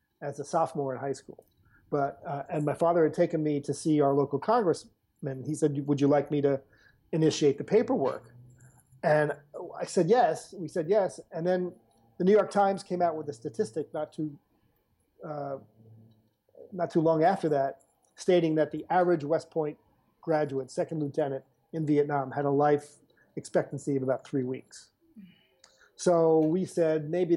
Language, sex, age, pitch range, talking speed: English, male, 40-59, 140-170 Hz, 170 wpm